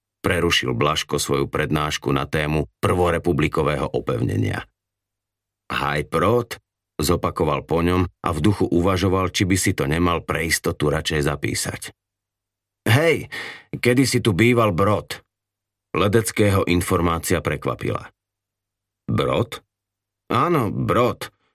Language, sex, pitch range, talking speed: Slovak, male, 90-105 Hz, 105 wpm